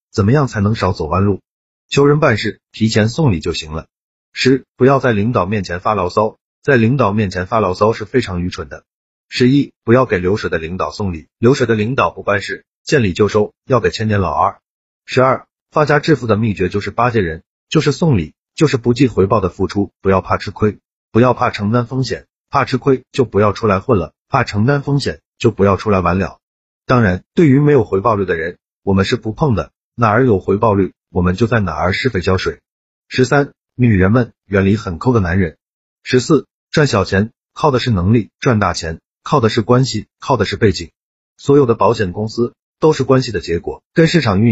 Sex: male